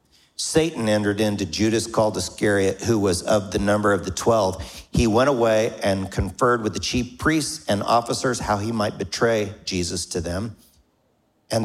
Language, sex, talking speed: English, male, 170 wpm